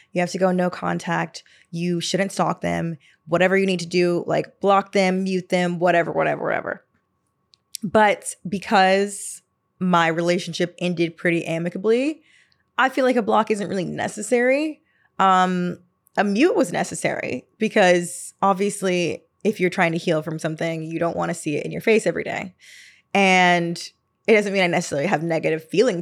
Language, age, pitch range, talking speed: English, 20-39, 170-205 Hz, 165 wpm